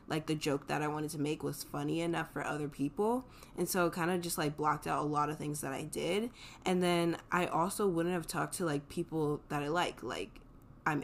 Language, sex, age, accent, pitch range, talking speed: English, female, 10-29, American, 150-175 Hz, 245 wpm